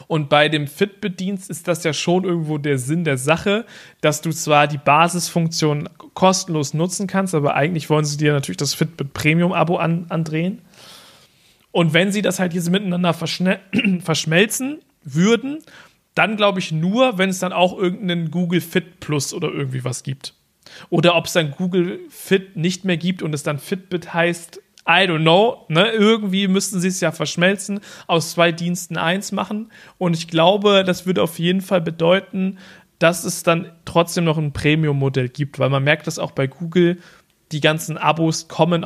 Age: 40-59